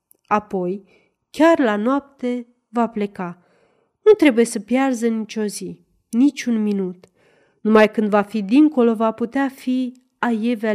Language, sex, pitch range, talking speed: Romanian, female, 200-265 Hz, 130 wpm